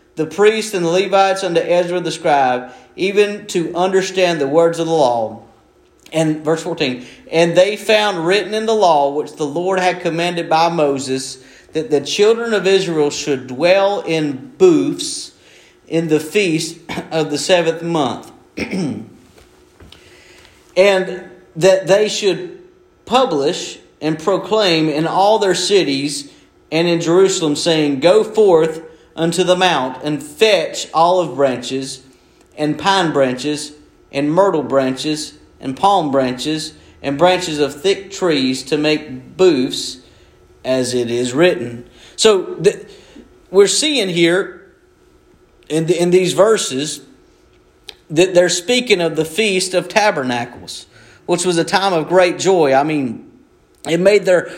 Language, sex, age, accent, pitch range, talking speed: English, male, 40-59, American, 150-195 Hz, 140 wpm